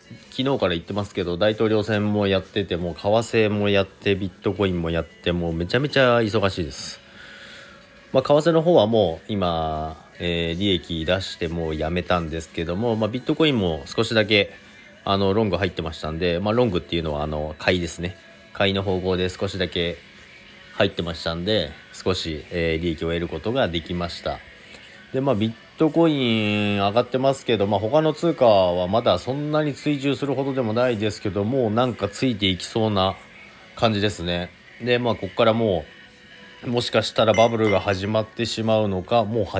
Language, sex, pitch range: Japanese, male, 90-120 Hz